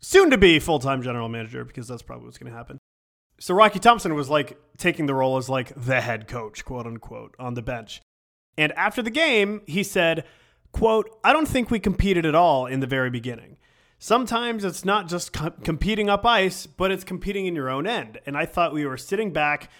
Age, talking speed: 30-49, 210 wpm